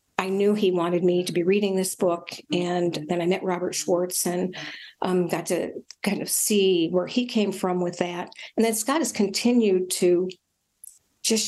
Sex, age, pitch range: female, 50-69, 180-210 Hz